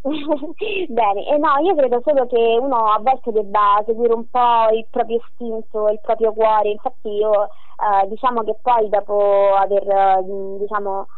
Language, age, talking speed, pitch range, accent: Italian, 20-39, 155 wpm, 205-230 Hz, native